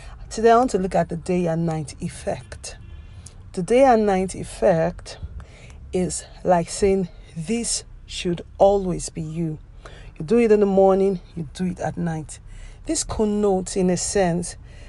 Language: English